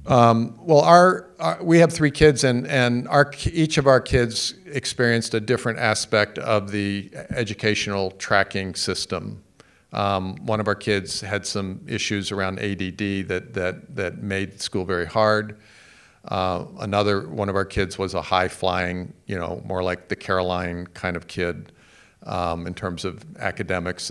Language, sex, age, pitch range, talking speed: English, male, 50-69, 95-115 Hz, 160 wpm